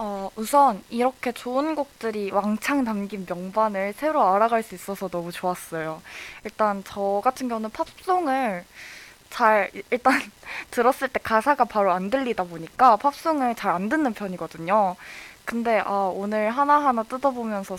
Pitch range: 190-255 Hz